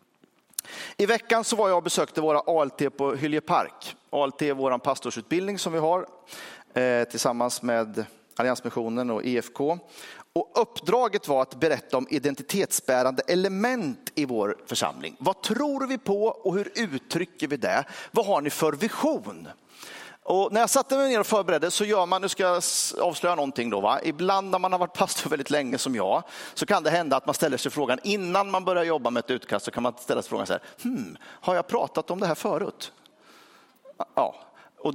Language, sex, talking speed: Swedish, male, 190 wpm